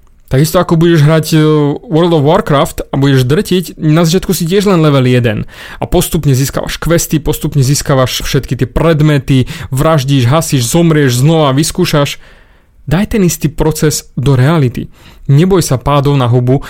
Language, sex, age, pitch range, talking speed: Slovak, male, 30-49, 130-160 Hz, 150 wpm